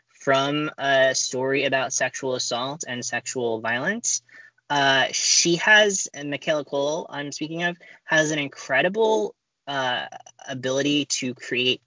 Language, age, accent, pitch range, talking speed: English, 20-39, American, 130-160 Hz, 125 wpm